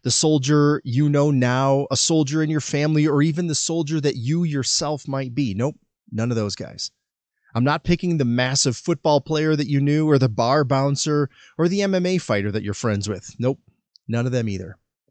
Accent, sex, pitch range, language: American, male, 120-160 Hz, English